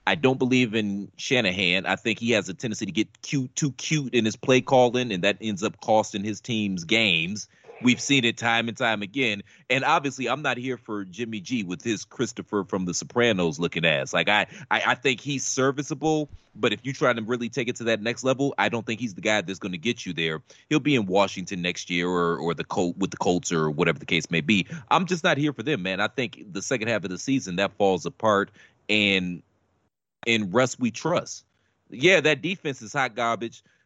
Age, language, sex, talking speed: 30-49, English, male, 230 wpm